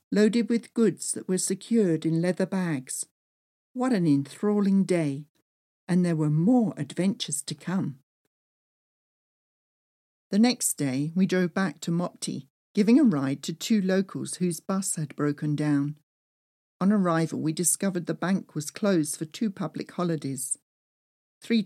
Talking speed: 145 wpm